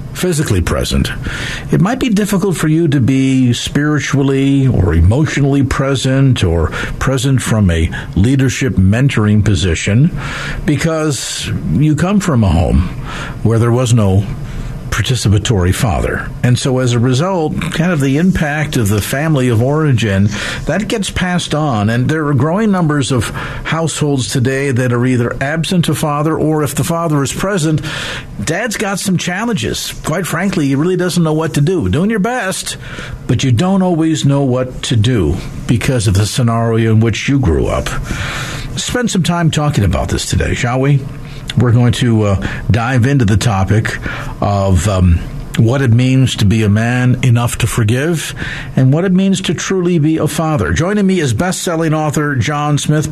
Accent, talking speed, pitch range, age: American, 170 wpm, 120-155 Hz, 50-69